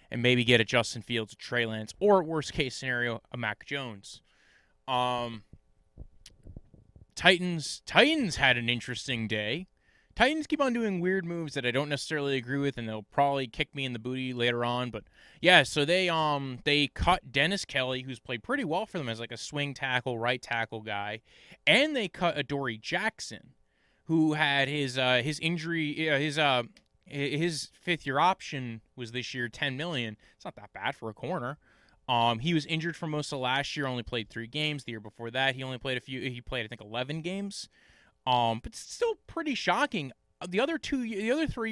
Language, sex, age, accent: English, male, 20-39, American